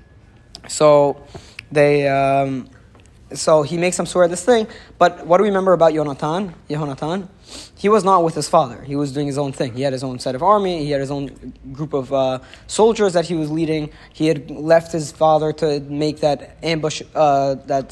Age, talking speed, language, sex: 20-39, 200 wpm, English, male